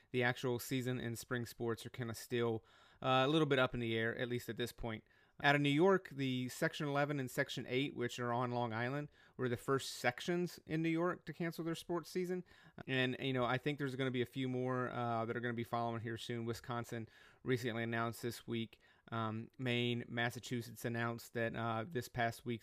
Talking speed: 225 wpm